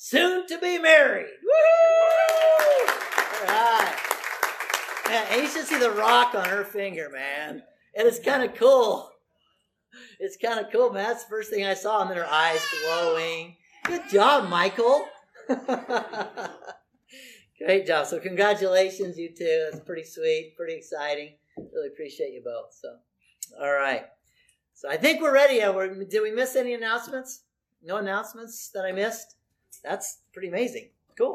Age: 50-69